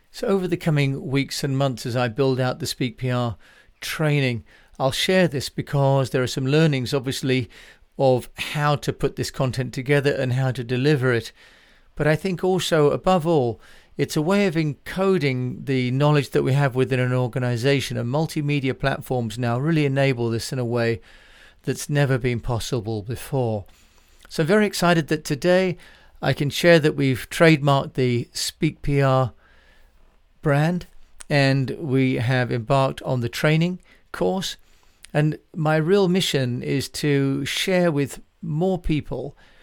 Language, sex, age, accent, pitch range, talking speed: English, male, 40-59, British, 130-155 Hz, 155 wpm